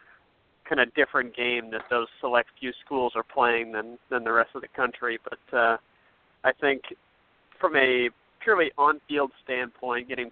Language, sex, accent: English, male, American